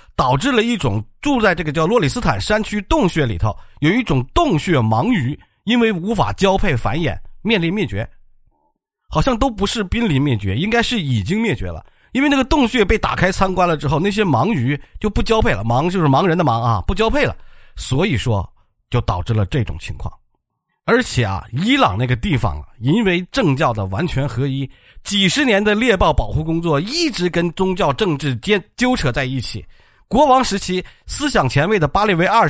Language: Chinese